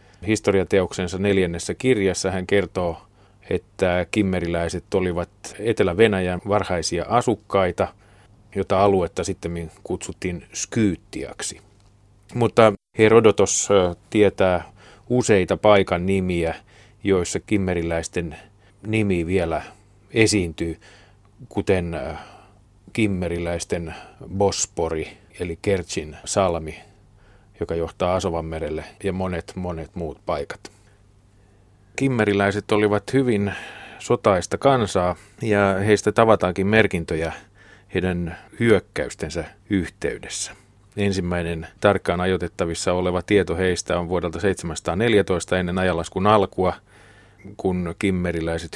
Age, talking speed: 30-49, 85 wpm